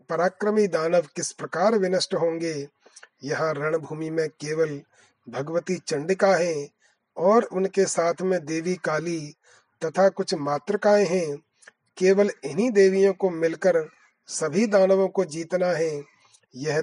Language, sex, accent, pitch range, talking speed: Hindi, male, native, 160-195 Hz, 120 wpm